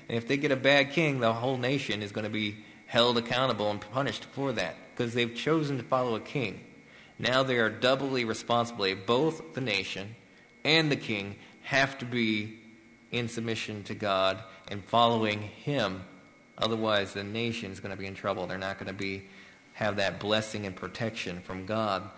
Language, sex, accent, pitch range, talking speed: English, male, American, 100-120 Hz, 185 wpm